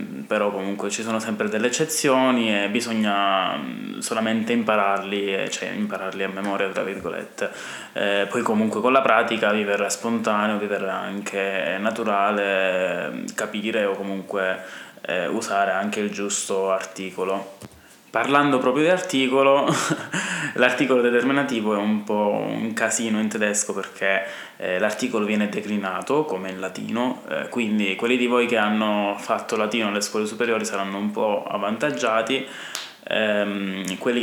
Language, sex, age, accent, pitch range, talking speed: Italian, male, 20-39, native, 100-125 Hz, 130 wpm